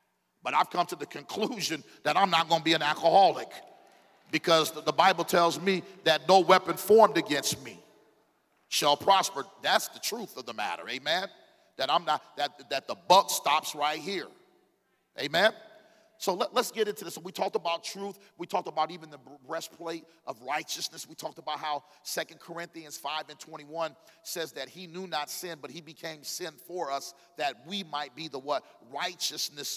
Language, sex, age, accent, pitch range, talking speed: English, male, 40-59, American, 145-175 Hz, 180 wpm